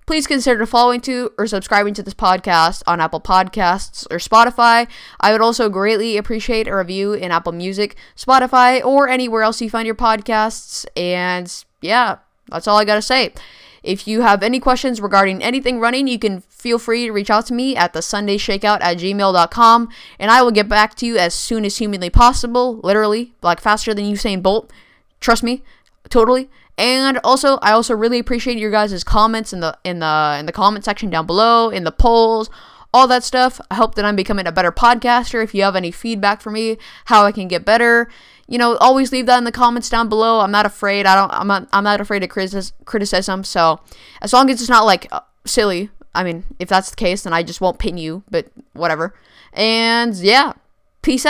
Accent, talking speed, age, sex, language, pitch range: American, 200 wpm, 10-29, female, English, 195-240 Hz